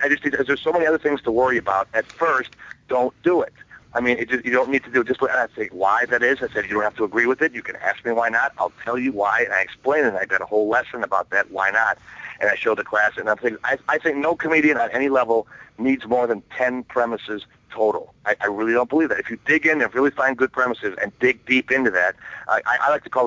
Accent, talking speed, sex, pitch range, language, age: American, 290 wpm, male, 115-135 Hz, English, 40-59